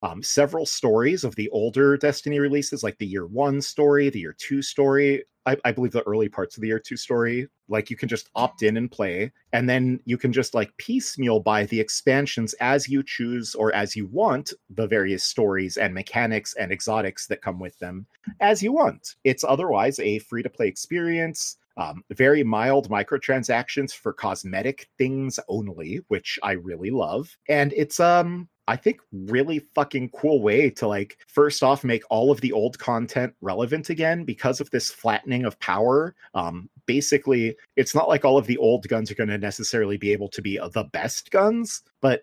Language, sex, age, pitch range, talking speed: English, male, 30-49, 110-140 Hz, 190 wpm